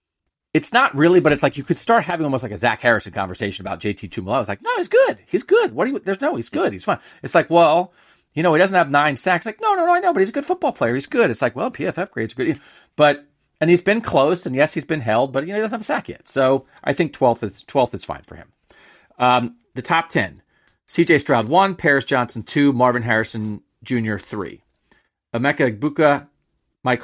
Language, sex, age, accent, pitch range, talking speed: English, male, 40-59, American, 115-150 Hz, 250 wpm